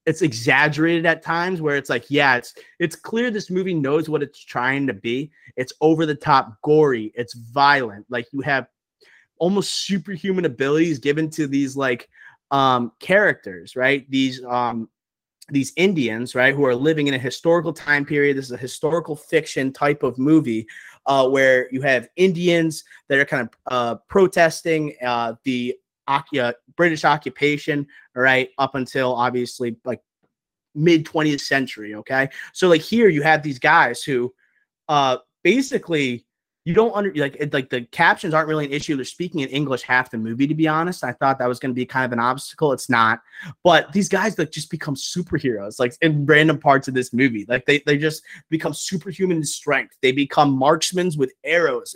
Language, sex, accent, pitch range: English, male, American, 130-160 Hz